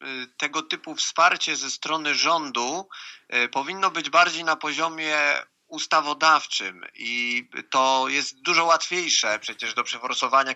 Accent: native